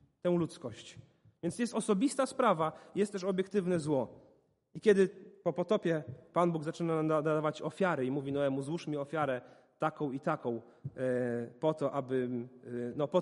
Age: 30-49